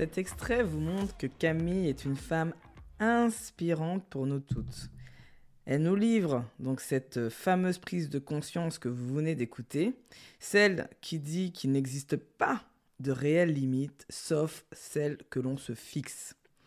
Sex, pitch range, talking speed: female, 135-205 Hz, 150 wpm